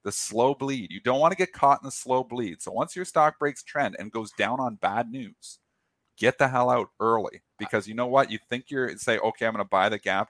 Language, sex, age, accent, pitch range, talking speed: English, male, 40-59, American, 120-150 Hz, 260 wpm